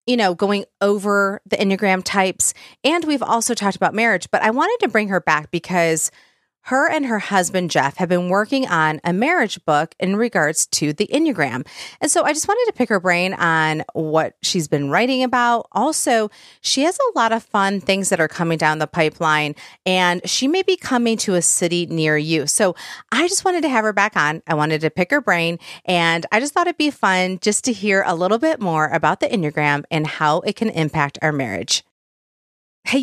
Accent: American